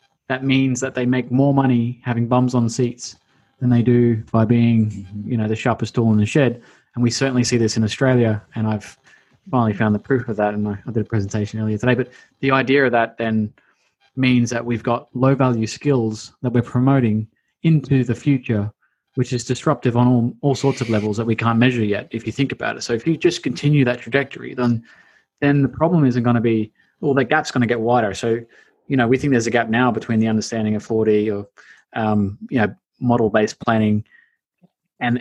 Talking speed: 215 wpm